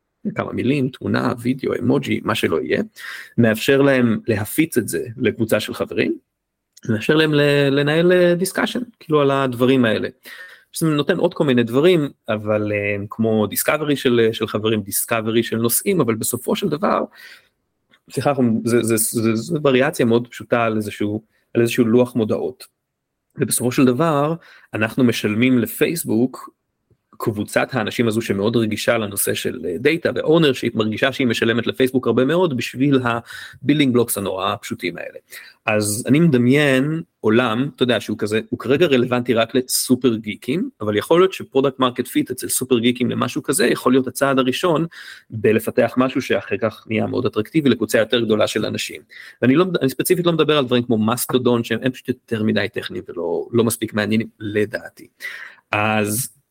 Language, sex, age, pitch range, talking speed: Hebrew, male, 30-49, 110-140 Hz, 150 wpm